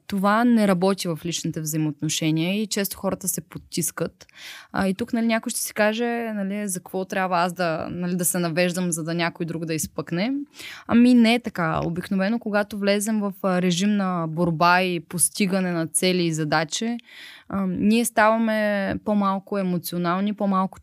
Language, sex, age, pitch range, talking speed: Bulgarian, female, 20-39, 175-215 Hz, 165 wpm